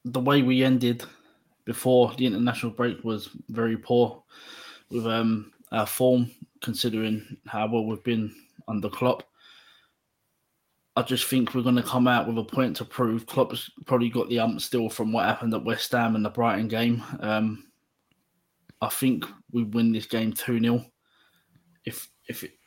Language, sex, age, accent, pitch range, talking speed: English, male, 20-39, British, 115-125 Hz, 165 wpm